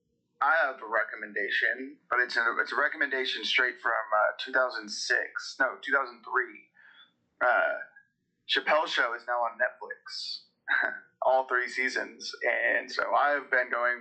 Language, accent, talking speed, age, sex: English, American, 130 wpm, 30-49, male